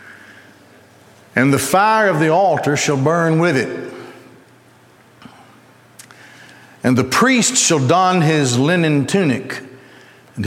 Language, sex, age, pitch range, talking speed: English, male, 60-79, 120-165 Hz, 110 wpm